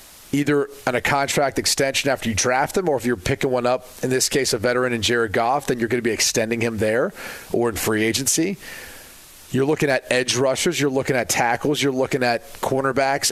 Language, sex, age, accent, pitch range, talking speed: English, male, 30-49, American, 120-140 Hz, 215 wpm